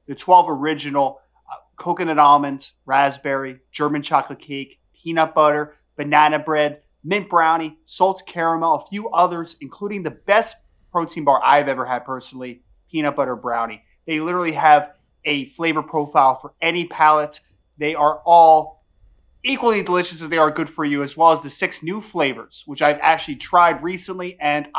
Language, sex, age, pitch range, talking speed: English, male, 30-49, 140-170 Hz, 160 wpm